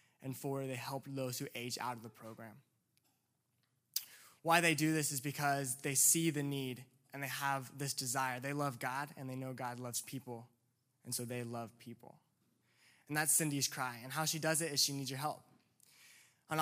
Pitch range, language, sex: 130-150 Hz, English, male